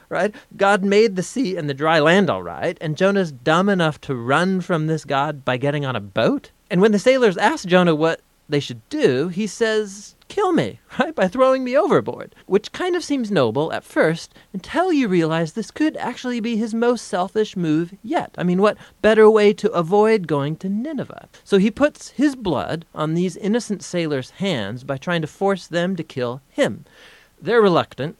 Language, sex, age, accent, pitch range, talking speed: English, male, 30-49, American, 125-200 Hz, 200 wpm